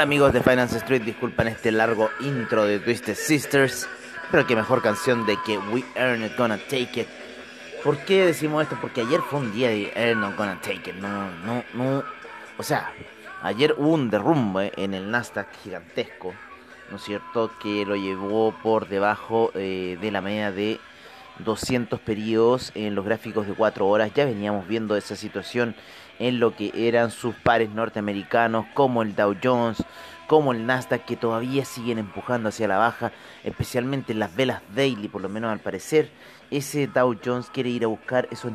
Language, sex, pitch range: Spanish, male, 105-125 Hz